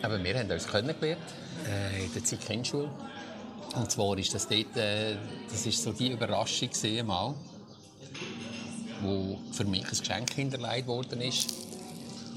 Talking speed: 145 wpm